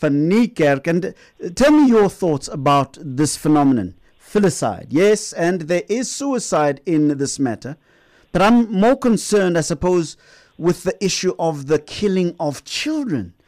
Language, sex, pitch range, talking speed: English, male, 145-200 Hz, 140 wpm